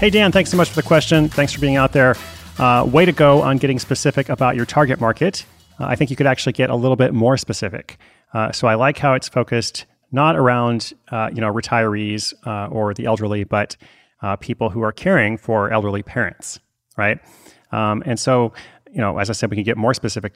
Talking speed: 225 wpm